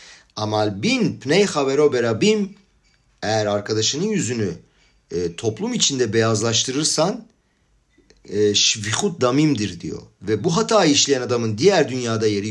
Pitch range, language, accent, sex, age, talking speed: 105-145 Hz, Turkish, native, male, 50-69, 80 wpm